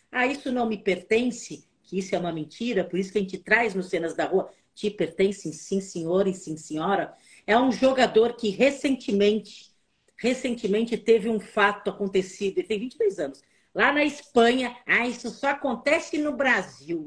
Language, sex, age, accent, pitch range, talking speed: Portuguese, female, 50-69, Brazilian, 190-235 Hz, 175 wpm